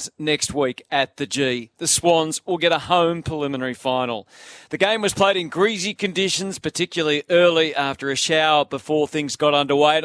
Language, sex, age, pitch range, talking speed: English, male, 40-59, 145-175 Hz, 180 wpm